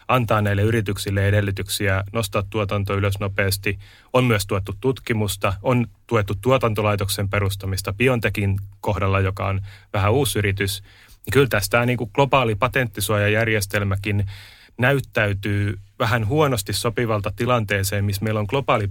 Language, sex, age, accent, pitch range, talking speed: Finnish, male, 30-49, native, 100-115 Hz, 120 wpm